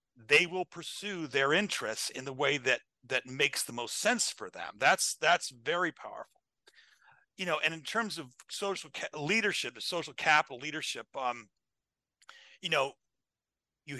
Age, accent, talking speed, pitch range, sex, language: 50-69, American, 155 wpm, 130-165 Hz, male, English